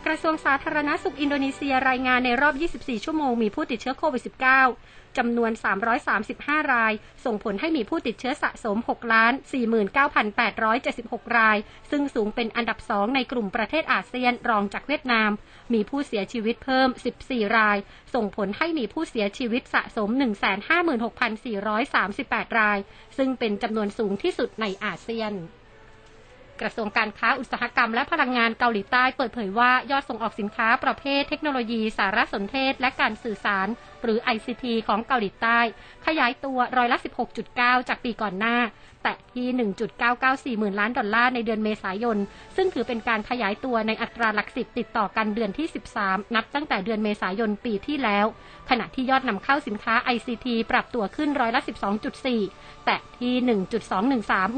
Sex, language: female, Thai